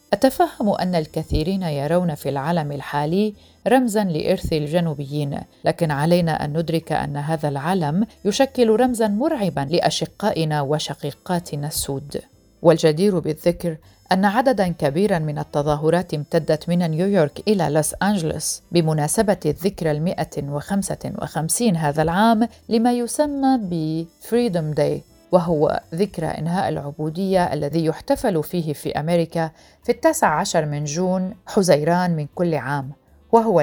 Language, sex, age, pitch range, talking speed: Arabic, female, 40-59, 150-190 Hz, 120 wpm